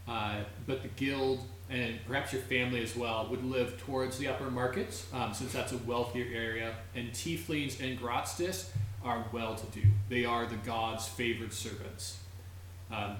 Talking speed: 160 wpm